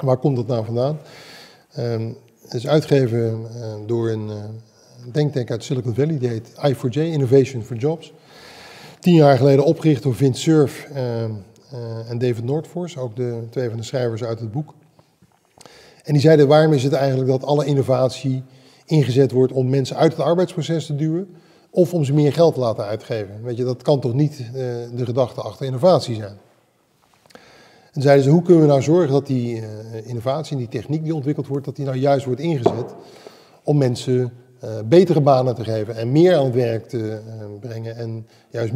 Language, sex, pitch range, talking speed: Dutch, male, 120-150 Hz, 185 wpm